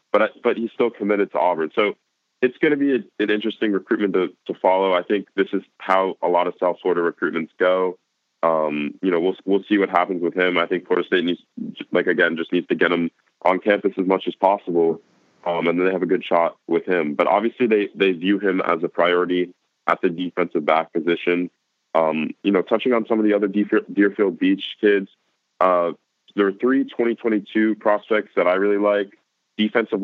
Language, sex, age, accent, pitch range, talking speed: English, male, 20-39, American, 85-105 Hz, 210 wpm